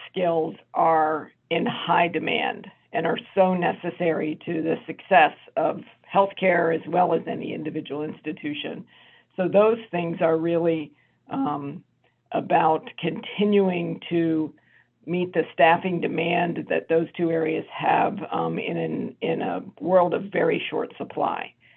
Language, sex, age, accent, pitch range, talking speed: English, female, 50-69, American, 160-180 Hz, 130 wpm